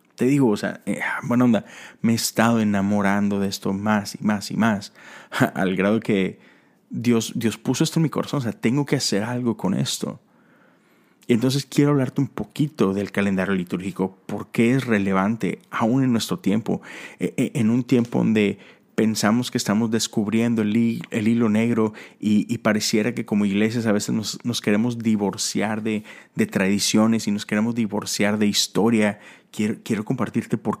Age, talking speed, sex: 30-49, 175 wpm, male